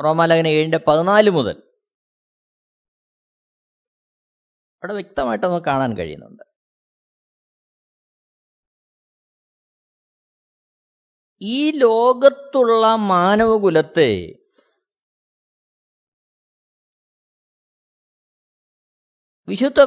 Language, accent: Malayalam, native